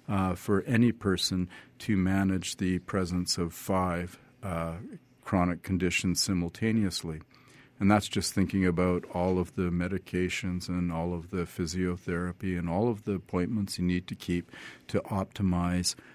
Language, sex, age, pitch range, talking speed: English, male, 50-69, 90-100 Hz, 145 wpm